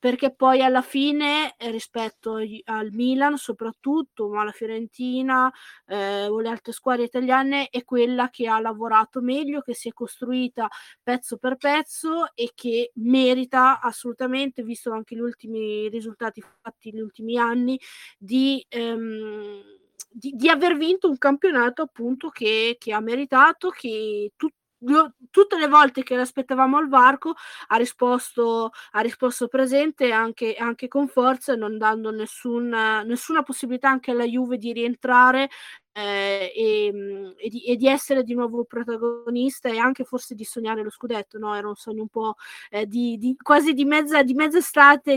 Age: 20-39